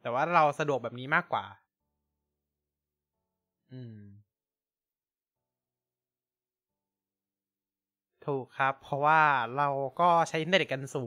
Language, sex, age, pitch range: Thai, male, 20-39, 100-155 Hz